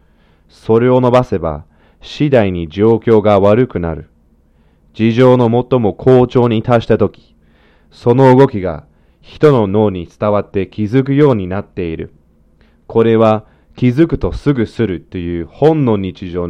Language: Japanese